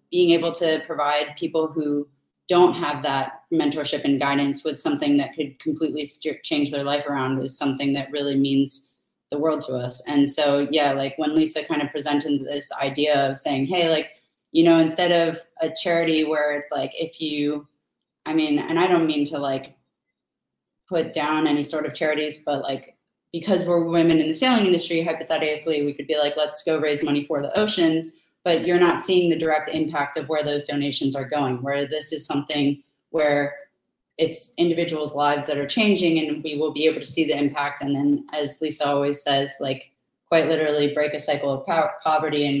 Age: 30-49